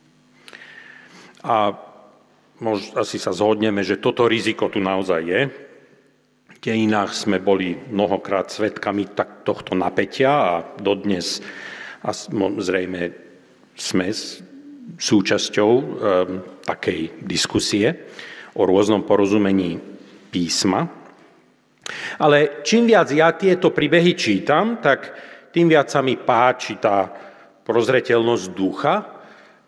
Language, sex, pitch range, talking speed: Slovak, male, 100-150 Hz, 100 wpm